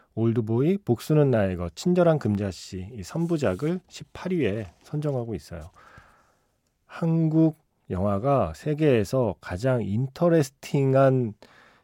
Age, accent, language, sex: 40-59, native, Korean, male